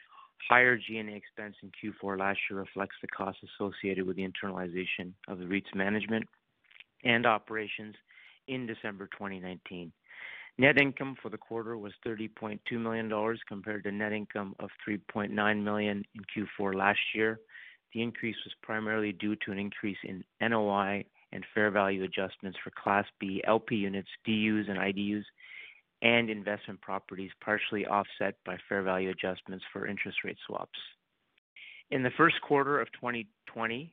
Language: English